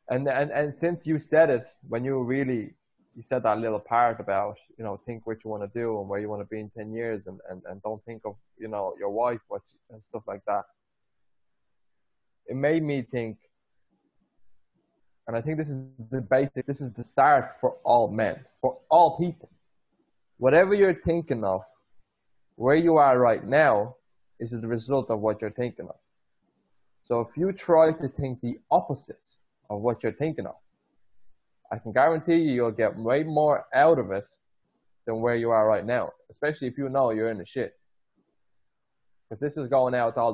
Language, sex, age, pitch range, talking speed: English, male, 20-39, 115-150 Hz, 200 wpm